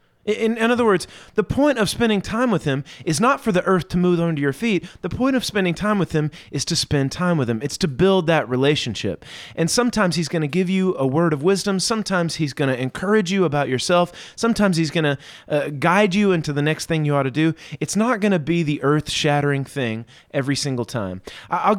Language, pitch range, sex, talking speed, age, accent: English, 135-190 Hz, male, 230 wpm, 30-49, American